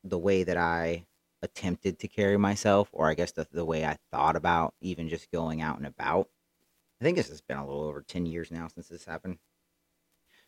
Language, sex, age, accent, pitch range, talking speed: English, male, 30-49, American, 85-105 Hz, 220 wpm